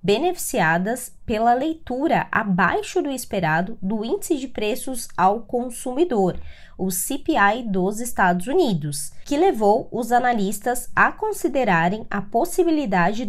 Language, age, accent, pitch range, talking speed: Portuguese, 20-39, Brazilian, 190-265 Hz, 115 wpm